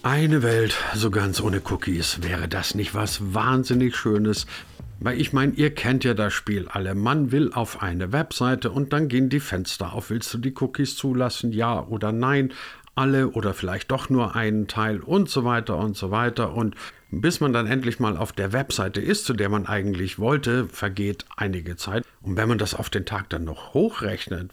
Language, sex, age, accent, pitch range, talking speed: German, male, 50-69, German, 100-125 Hz, 200 wpm